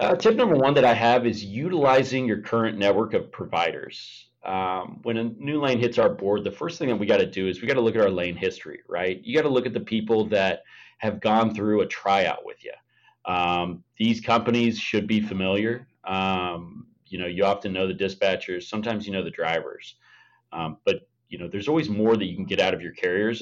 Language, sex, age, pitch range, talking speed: English, male, 30-49, 95-145 Hz, 230 wpm